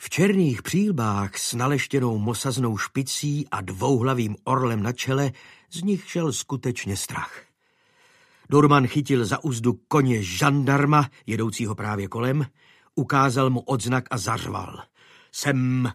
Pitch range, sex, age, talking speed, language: 120-160 Hz, male, 50-69, 120 wpm, Slovak